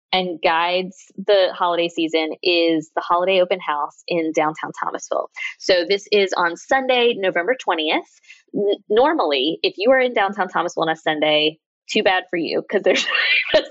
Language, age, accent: English, 20-39, American